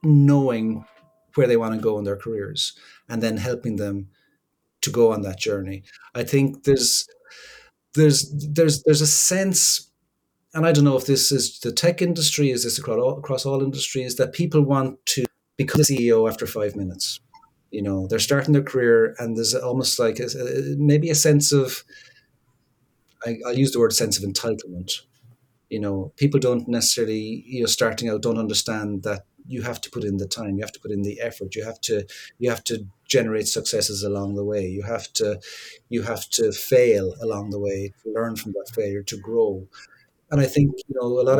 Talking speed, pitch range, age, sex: 200 wpm, 105-140 Hz, 30-49, male